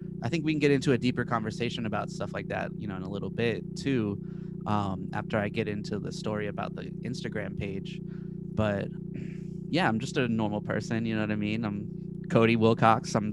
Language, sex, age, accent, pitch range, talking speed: English, male, 20-39, American, 115-175 Hz, 210 wpm